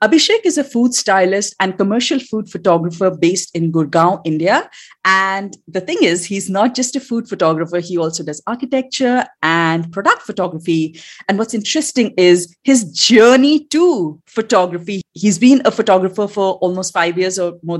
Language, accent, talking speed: English, Indian, 160 wpm